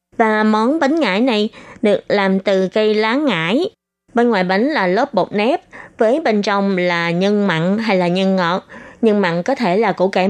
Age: 20-39